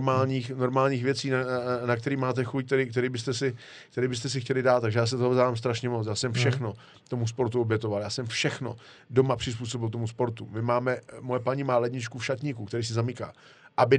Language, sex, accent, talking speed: Czech, male, native, 210 wpm